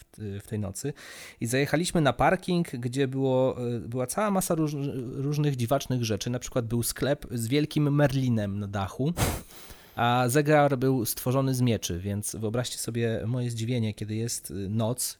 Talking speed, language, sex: 145 wpm, Polish, male